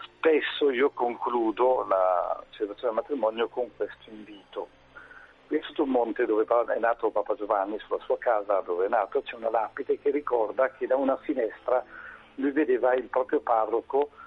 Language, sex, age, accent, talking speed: Italian, male, 50-69, native, 165 wpm